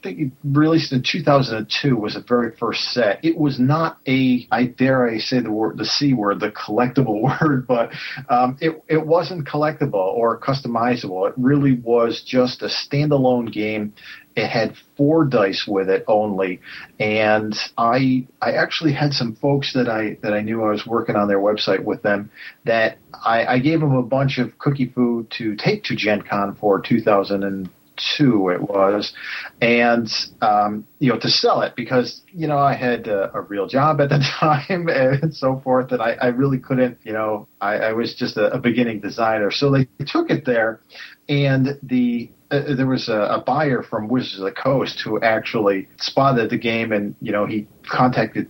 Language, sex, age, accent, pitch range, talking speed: English, male, 40-59, American, 110-135 Hz, 185 wpm